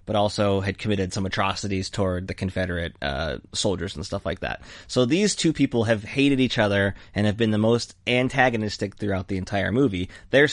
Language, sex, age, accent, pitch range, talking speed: English, male, 20-39, American, 95-120 Hz, 195 wpm